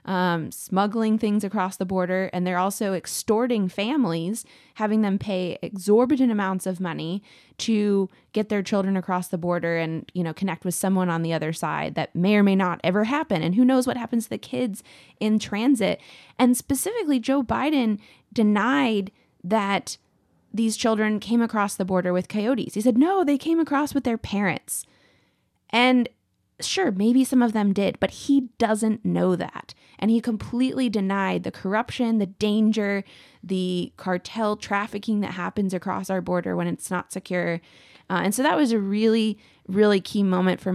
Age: 20-39